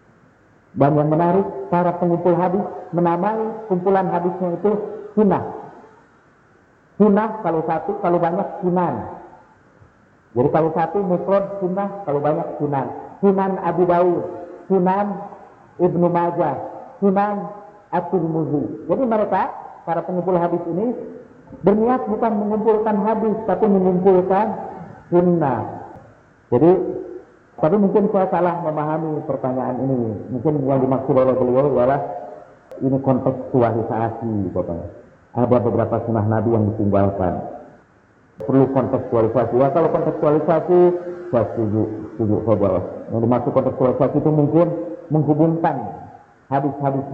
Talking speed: 110 wpm